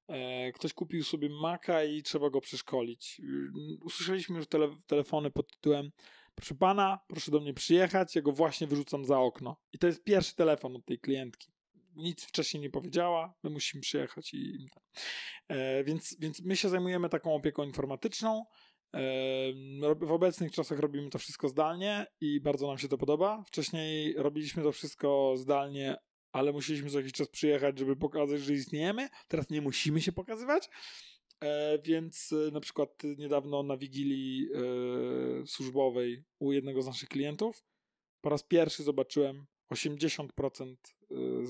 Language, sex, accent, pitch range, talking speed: Polish, male, native, 140-165 Hz, 140 wpm